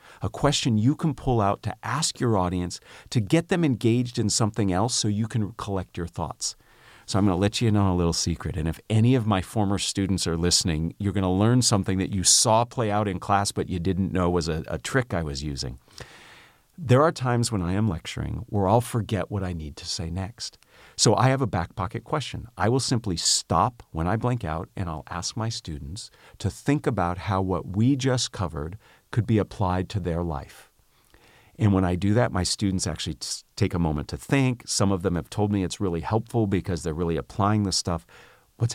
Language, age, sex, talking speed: English, 50-69, male, 225 wpm